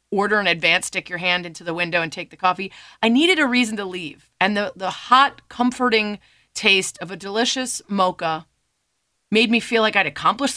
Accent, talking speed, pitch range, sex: American, 200 wpm, 180-250 Hz, female